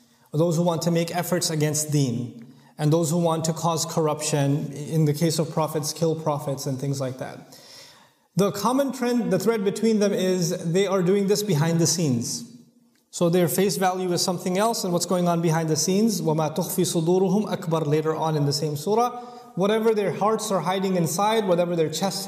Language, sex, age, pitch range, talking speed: English, male, 30-49, 160-195 Hz, 200 wpm